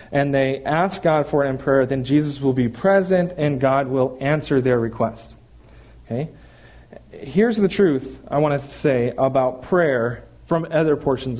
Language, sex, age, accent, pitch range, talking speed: English, male, 40-59, American, 140-210 Hz, 170 wpm